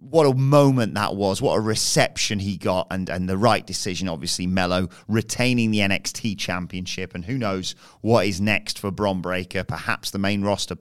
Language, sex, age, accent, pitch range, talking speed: English, male, 30-49, British, 100-140 Hz, 190 wpm